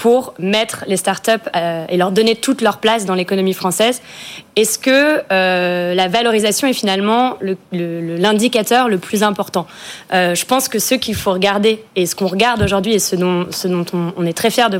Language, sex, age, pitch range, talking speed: French, female, 20-39, 185-225 Hz, 205 wpm